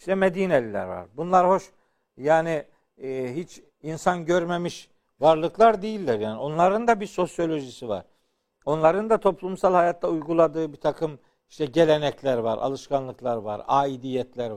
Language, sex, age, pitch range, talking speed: Turkish, male, 60-79, 150-200 Hz, 130 wpm